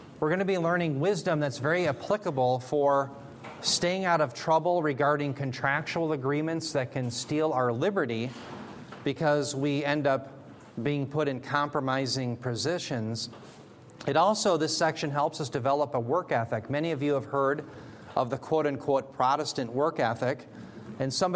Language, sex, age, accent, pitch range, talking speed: English, male, 40-59, American, 130-160 Hz, 150 wpm